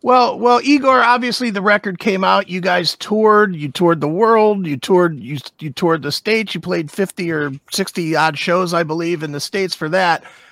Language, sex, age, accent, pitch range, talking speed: English, male, 40-59, American, 155-215 Hz, 205 wpm